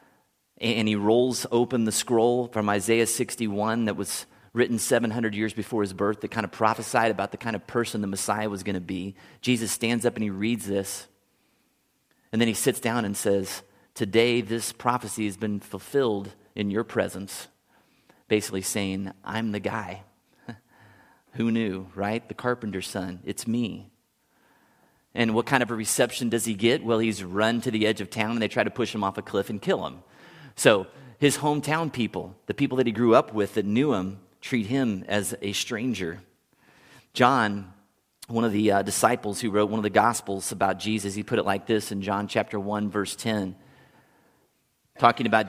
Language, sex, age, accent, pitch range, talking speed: English, male, 30-49, American, 100-115 Hz, 190 wpm